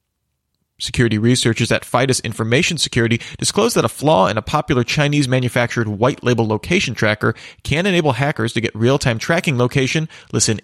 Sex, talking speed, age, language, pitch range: male, 145 wpm, 30-49, English, 115-150 Hz